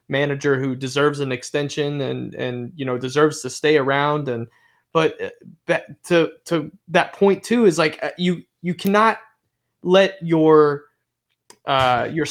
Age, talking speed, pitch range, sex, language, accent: 20-39, 140 wpm, 140-175 Hz, male, English, American